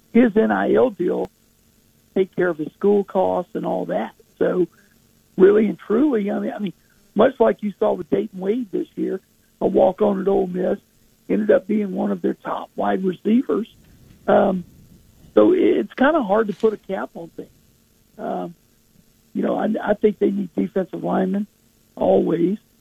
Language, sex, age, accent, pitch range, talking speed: English, male, 60-79, American, 180-210 Hz, 170 wpm